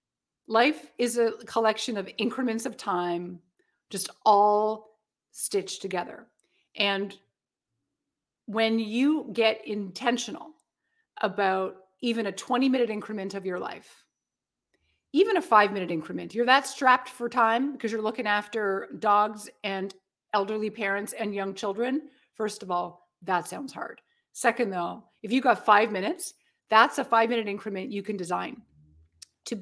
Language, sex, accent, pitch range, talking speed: English, female, American, 195-245 Hz, 135 wpm